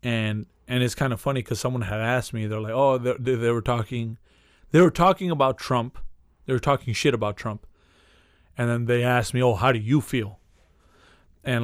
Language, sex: English, male